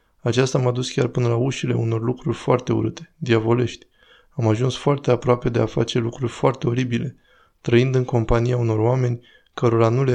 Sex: male